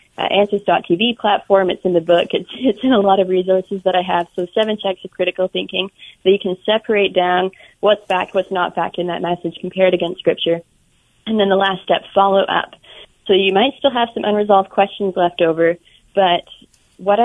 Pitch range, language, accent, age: 180-205 Hz, English, American, 20-39